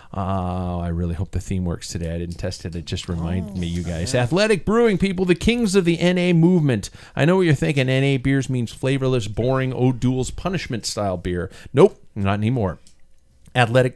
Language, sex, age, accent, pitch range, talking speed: English, male, 40-59, American, 100-150 Hz, 190 wpm